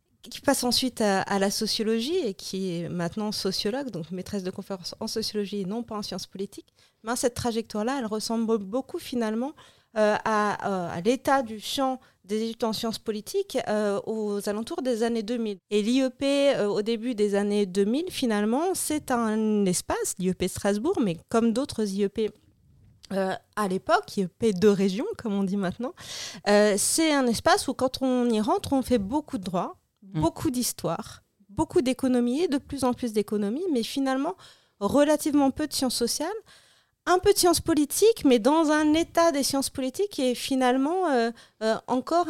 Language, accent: French, French